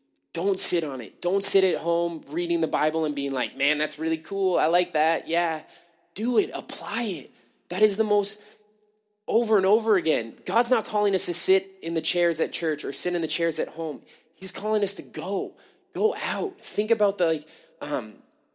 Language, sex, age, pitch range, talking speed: English, male, 20-39, 125-180 Hz, 205 wpm